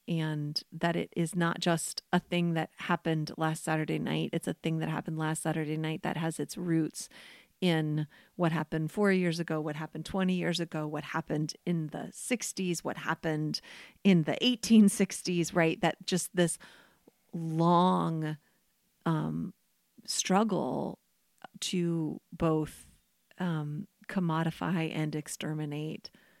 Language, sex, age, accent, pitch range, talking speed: English, female, 30-49, American, 155-185 Hz, 135 wpm